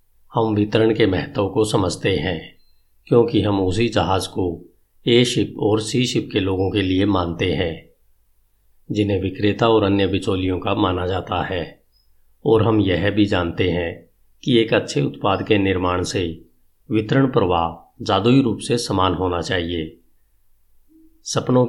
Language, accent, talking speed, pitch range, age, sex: Hindi, native, 150 wpm, 90-115 Hz, 50-69, male